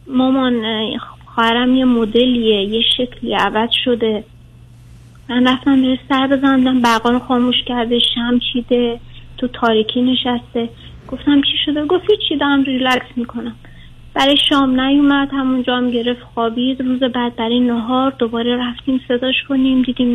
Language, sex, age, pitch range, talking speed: Persian, female, 30-49, 240-275 Hz, 130 wpm